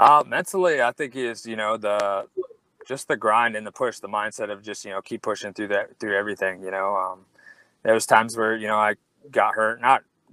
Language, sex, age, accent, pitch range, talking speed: English, male, 20-39, American, 100-115 Hz, 240 wpm